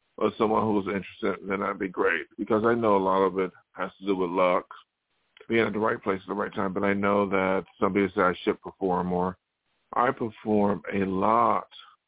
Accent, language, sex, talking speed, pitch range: American, English, male, 225 wpm, 100-115 Hz